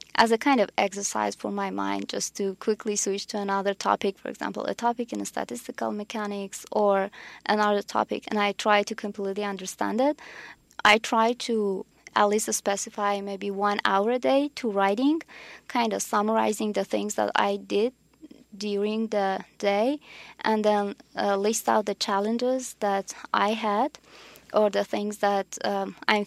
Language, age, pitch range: English, 20-39, 195-220 Hz